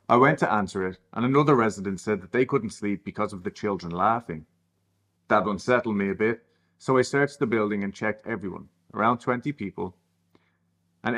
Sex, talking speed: male, 190 wpm